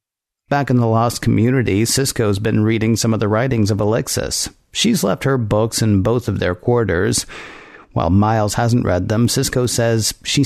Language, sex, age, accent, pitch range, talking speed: English, male, 50-69, American, 105-125 Hz, 180 wpm